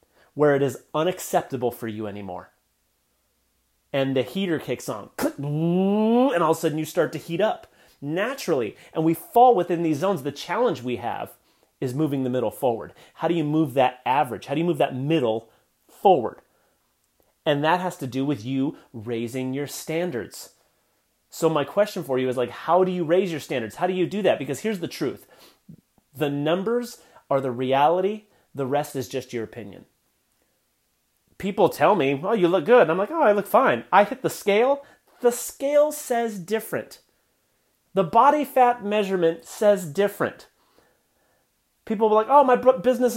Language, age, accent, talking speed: English, 30-49, American, 180 wpm